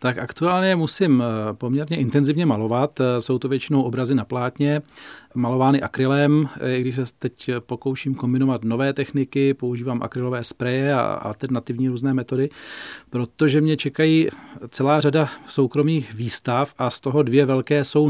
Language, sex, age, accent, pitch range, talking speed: Czech, male, 40-59, native, 125-140 Hz, 140 wpm